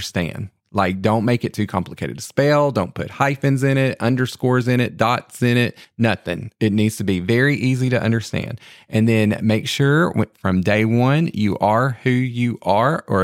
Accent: American